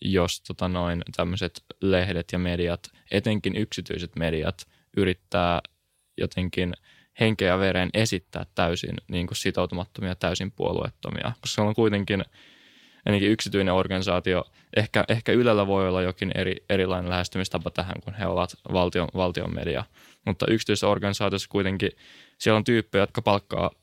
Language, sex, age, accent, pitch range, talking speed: Finnish, male, 10-29, native, 90-105 Hz, 130 wpm